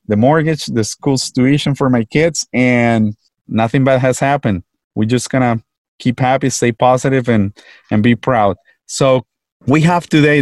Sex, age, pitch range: male, 30-49, 115-135 Hz